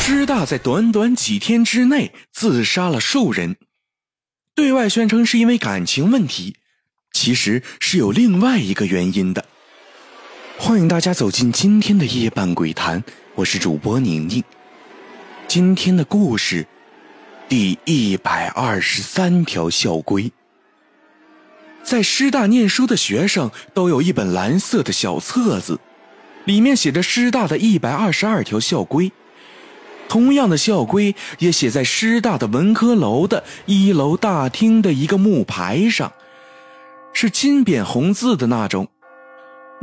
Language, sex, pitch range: Chinese, male, 155-235 Hz